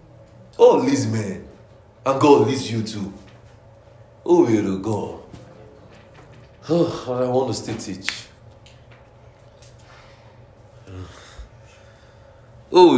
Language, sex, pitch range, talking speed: English, male, 110-135 Hz, 90 wpm